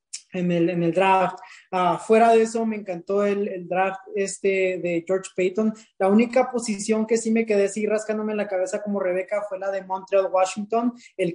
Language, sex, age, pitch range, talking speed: English, male, 20-39, 185-210 Hz, 195 wpm